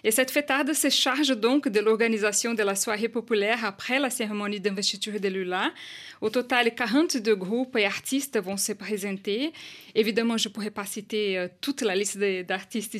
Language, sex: French, female